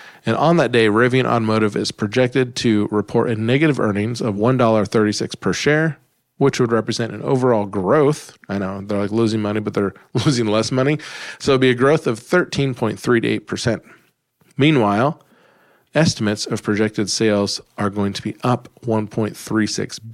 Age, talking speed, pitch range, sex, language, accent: 40-59, 160 wpm, 105-130 Hz, male, English, American